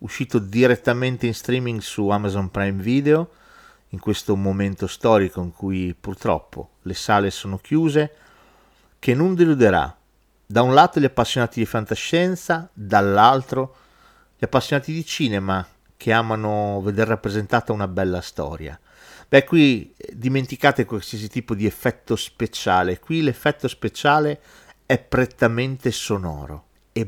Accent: native